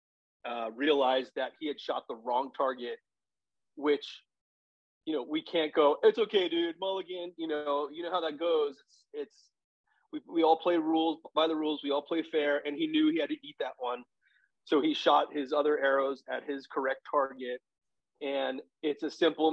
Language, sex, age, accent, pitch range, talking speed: English, male, 30-49, American, 145-185 Hz, 195 wpm